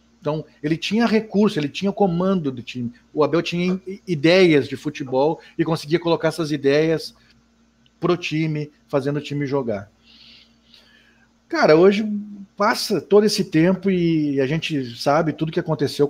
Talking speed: 150 wpm